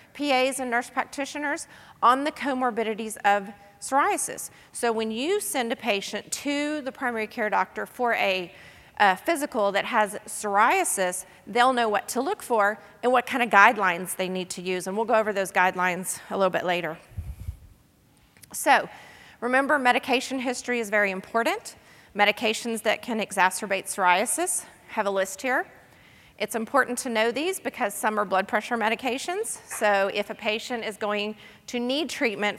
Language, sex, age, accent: English, female, 40-59, American